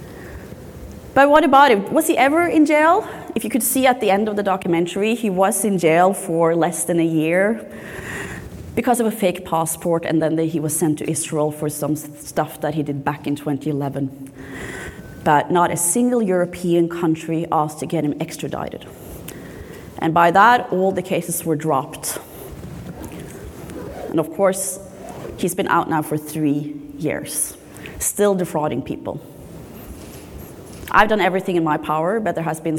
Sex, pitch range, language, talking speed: female, 160-215 Hz, English, 165 wpm